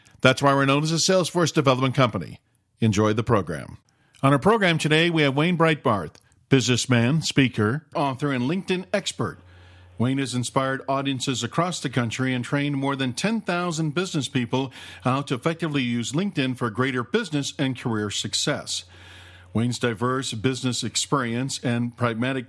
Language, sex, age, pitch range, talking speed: English, male, 50-69, 115-145 Hz, 150 wpm